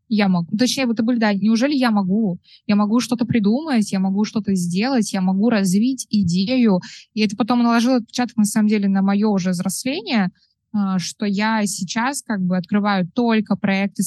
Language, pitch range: Russian, 185-215 Hz